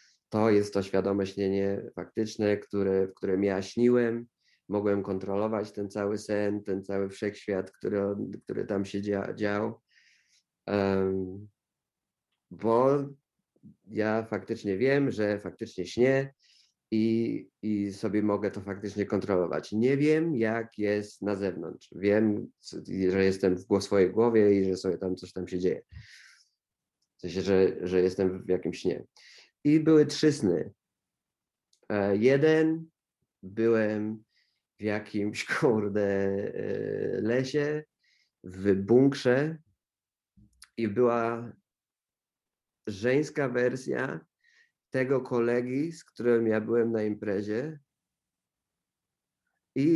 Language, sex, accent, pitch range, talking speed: Polish, male, native, 100-120 Hz, 115 wpm